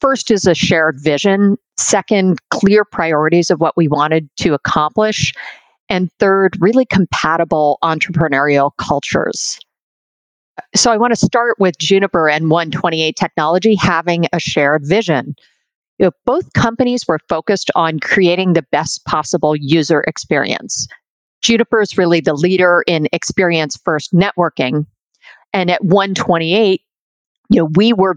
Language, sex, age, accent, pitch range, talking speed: English, female, 50-69, American, 155-195 Hz, 130 wpm